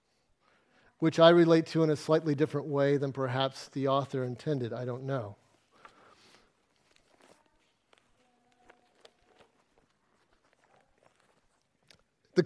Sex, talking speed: male, 85 wpm